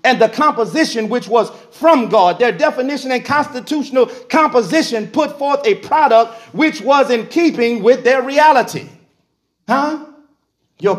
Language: English